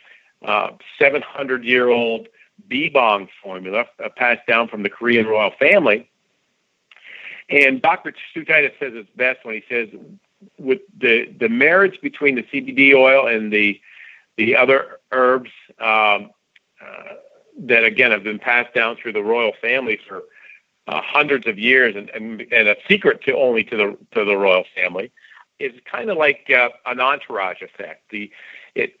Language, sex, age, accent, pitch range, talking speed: English, male, 50-69, American, 110-150 Hz, 155 wpm